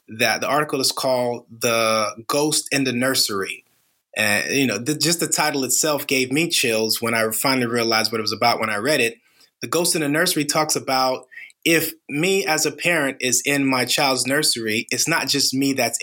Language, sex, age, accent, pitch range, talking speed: English, male, 30-49, American, 115-145 Hz, 205 wpm